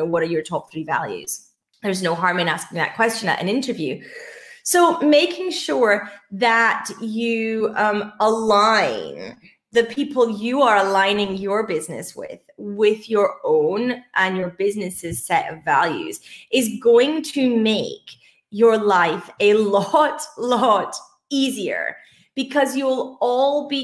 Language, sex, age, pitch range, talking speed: English, female, 30-49, 180-245 Hz, 135 wpm